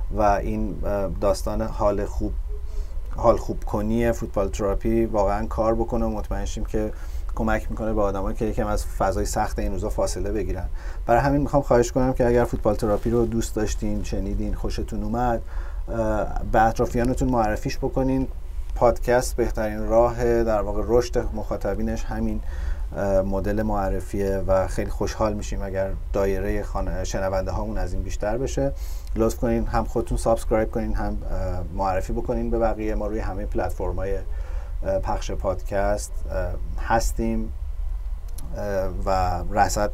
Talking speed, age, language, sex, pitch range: 135 wpm, 30-49, Persian, male, 90-110 Hz